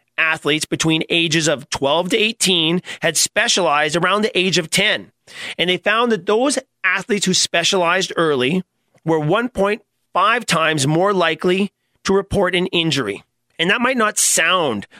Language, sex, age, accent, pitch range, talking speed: English, male, 40-59, American, 155-190 Hz, 150 wpm